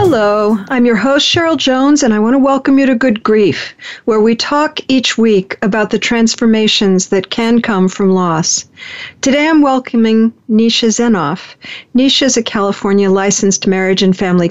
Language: English